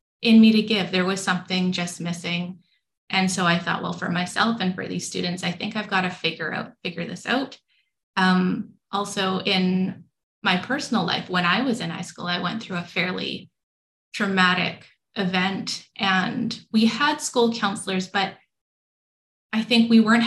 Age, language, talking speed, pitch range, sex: 20-39, English, 175 wpm, 180-220 Hz, female